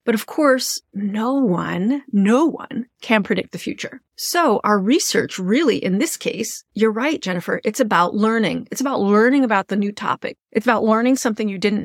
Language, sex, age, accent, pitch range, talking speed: English, female, 30-49, American, 195-245 Hz, 185 wpm